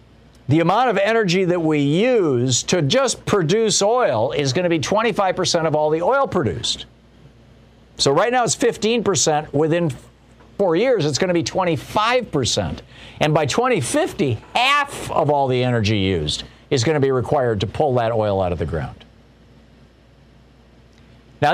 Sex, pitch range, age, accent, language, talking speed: male, 120-185 Hz, 50-69, American, English, 160 wpm